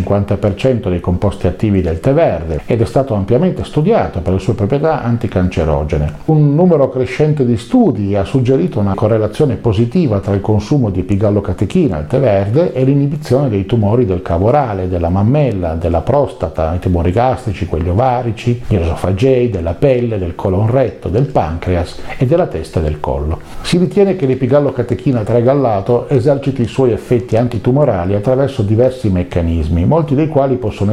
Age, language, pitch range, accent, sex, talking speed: 50-69, Italian, 95-130 Hz, native, male, 160 wpm